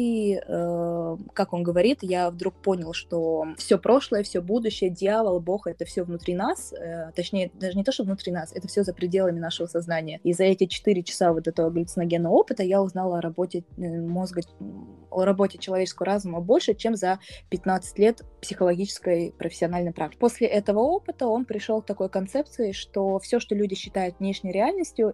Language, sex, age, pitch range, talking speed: Russian, female, 20-39, 175-205 Hz, 170 wpm